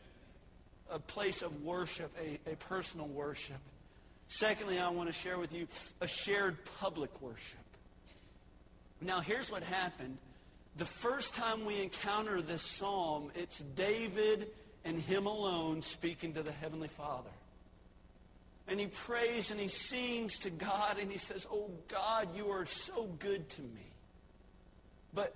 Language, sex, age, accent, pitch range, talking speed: English, male, 40-59, American, 175-225 Hz, 140 wpm